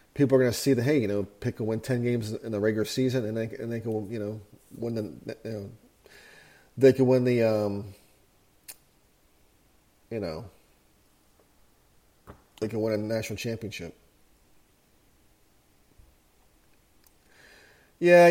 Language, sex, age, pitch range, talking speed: English, male, 40-59, 110-140 Hz, 140 wpm